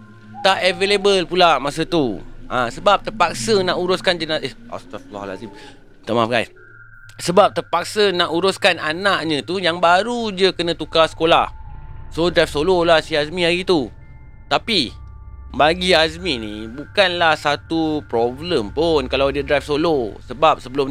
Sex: male